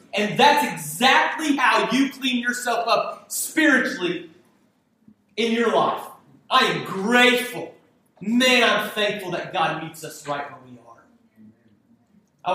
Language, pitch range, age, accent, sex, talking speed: English, 170-235 Hz, 30-49, American, male, 130 wpm